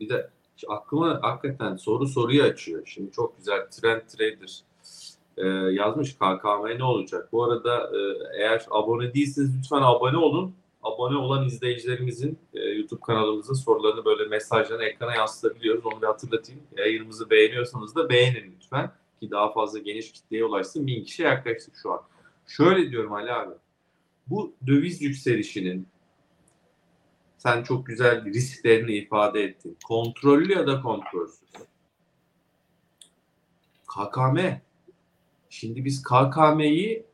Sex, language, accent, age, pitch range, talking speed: male, Turkish, native, 40-59, 115-155 Hz, 120 wpm